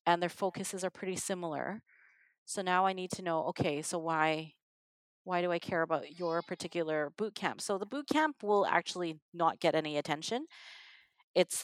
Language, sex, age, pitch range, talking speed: English, female, 30-49, 160-200 Hz, 170 wpm